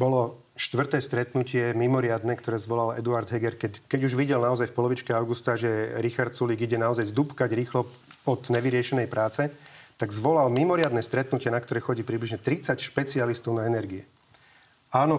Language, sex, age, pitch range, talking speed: Slovak, male, 40-59, 115-140 Hz, 155 wpm